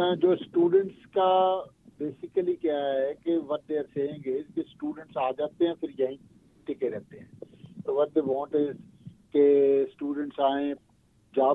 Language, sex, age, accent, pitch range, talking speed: Hindi, male, 50-69, native, 135-170 Hz, 130 wpm